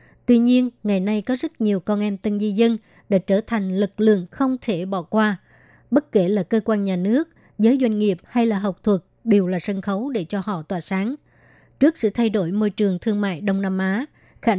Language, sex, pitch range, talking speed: Vietnamese, male, 195-225 Hz, 230 wpm